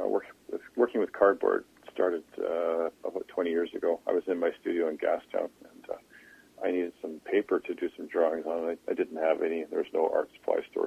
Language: English